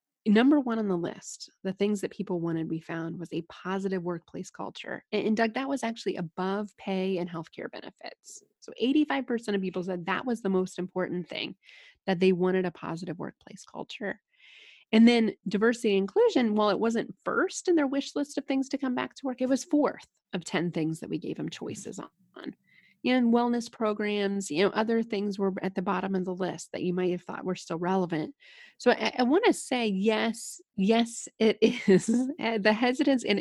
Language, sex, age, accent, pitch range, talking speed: English, female, 30-49, American, 185-240 Hz, 200 wpm